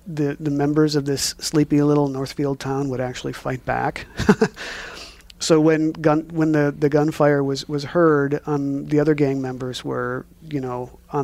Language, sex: English, male